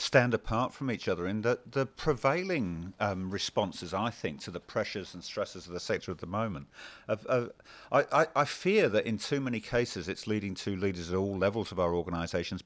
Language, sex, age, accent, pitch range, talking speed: English, male, 50-69, British, 95-125 Hz, 205 wpm